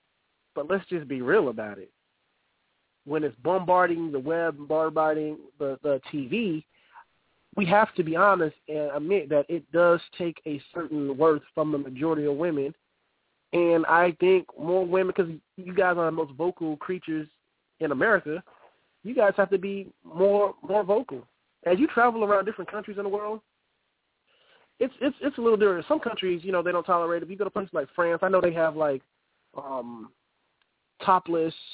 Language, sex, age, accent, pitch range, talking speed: English, male, 30-49, American, 145-195 Hz, 180 wpm